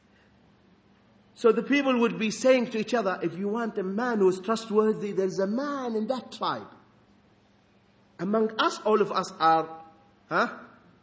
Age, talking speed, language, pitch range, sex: 50-69, 165 wpm, English, 175-250 Hz, male